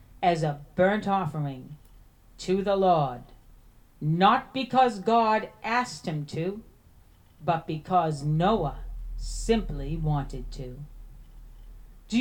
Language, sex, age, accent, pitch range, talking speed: English, female, 40-59, American, 155-215 Hz, 100 wpm